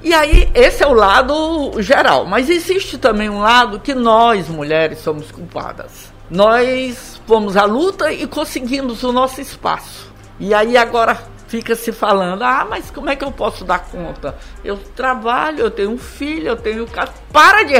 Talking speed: 170 wpm